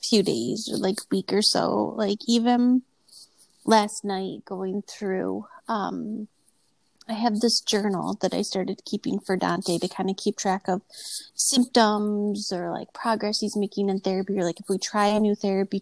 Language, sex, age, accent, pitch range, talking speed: English, female, 30-49, American, 185-215 Hz, 175 wpm